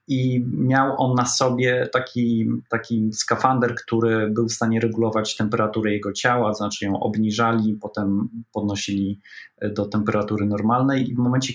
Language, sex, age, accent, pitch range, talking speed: Polish, male, 20-39, native, 110-125 Hz, 140 wpm